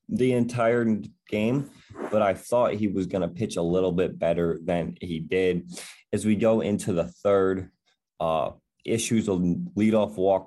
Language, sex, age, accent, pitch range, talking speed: English, male, 20-39, American, 90-115 Hz, 165 wpm